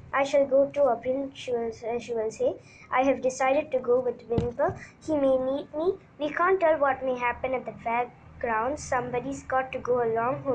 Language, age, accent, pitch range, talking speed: Tamil, 20-39, native, 225-265 Hz, 200 wpm